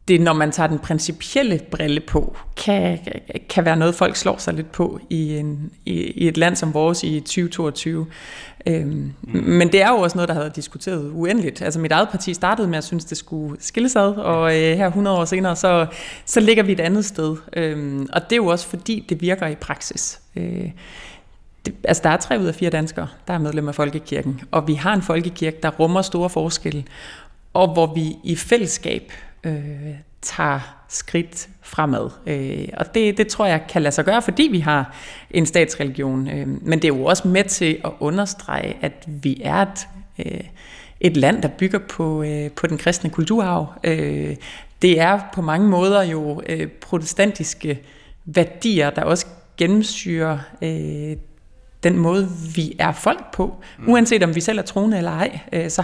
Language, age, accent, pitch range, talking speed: Danish, 30-49, native, 155-185 Hz, 180 wpm